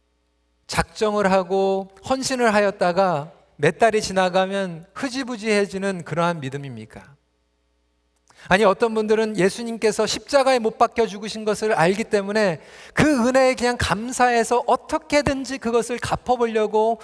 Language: Korean